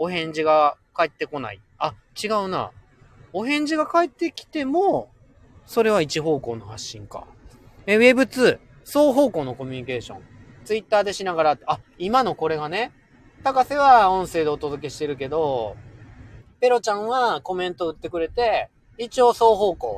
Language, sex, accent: Japanese, male, native